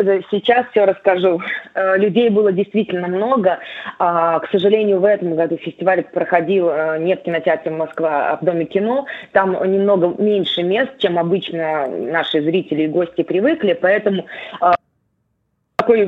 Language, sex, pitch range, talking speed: Russian, female, 175-210 Hz, 130 wpm